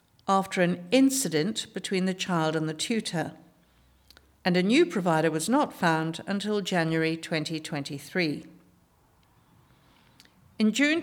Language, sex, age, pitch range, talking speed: English, female, 60-79, 170-230 Hz, 115 wpm